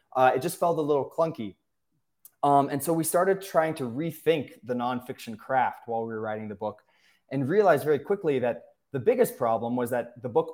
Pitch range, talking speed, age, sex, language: 115-145 Hz, 205 wpm, 20-39, male, English